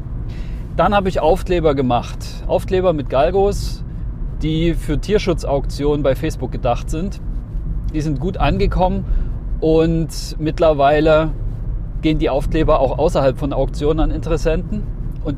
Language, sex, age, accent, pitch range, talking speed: German, male, 40-59, German, 120-155 Hz, 120 wpm